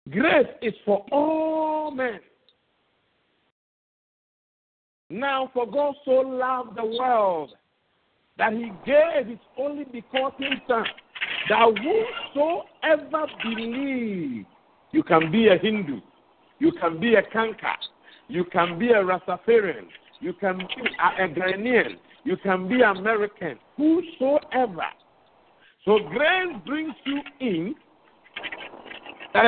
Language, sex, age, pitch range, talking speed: English, male, 50-69, 195-280 Hz, 110 wpm